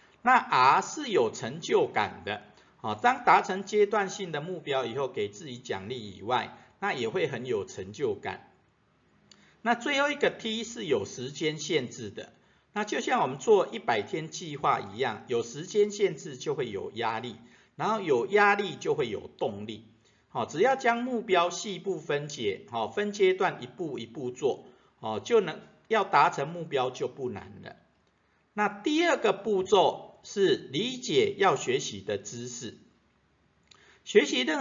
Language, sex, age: Chinese, male, 50-69